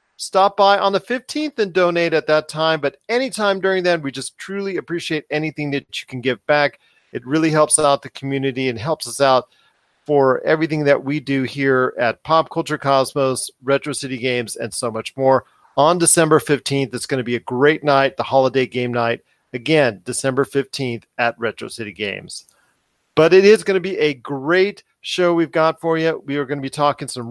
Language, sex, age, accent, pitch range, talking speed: English, male, 40-59, American, 135-175 Hz, 200 wpm